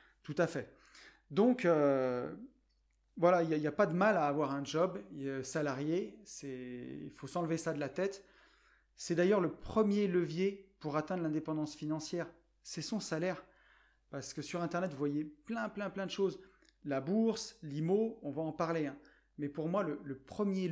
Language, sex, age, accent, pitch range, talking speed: French, male, 30-49, French, 145-185 Hz, 180 wpm